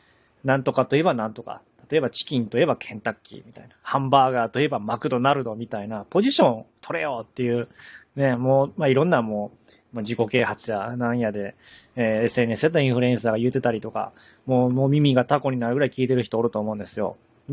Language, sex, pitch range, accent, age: Japanese, male, 115-145 Hz, native, 20-39